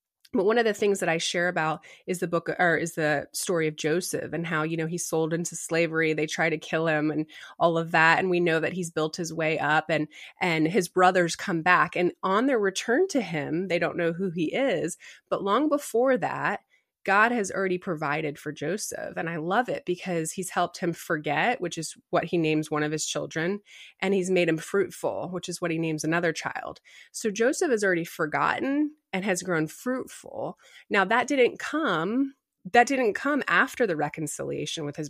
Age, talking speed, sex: 20-39, 210 wpm, female